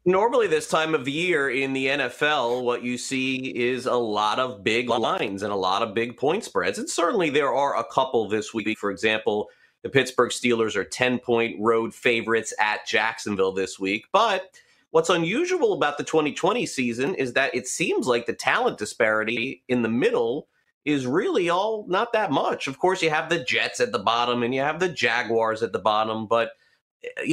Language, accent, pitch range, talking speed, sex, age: English, American, 115-160 Hz, 200 wpm, male, 30-49